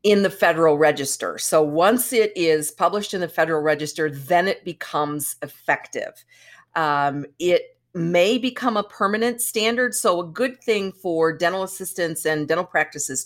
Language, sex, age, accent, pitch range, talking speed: English, female, 50-69, American, 150-190 Hz, 155 wpm